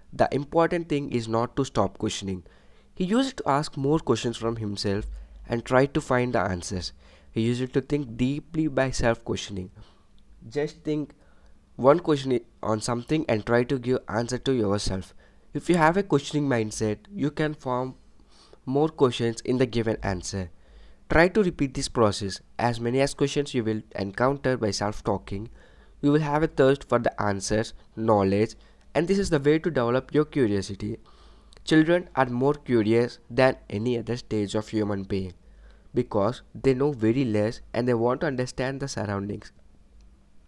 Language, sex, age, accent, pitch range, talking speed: English, male, 20-39, Indian, 105-140 Hz, 165 wpm